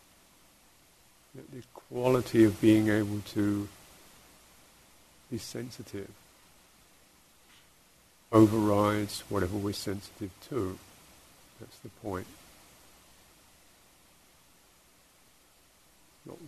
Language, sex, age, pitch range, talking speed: English, male, 50-69, 100-110 Hz, 65 wpm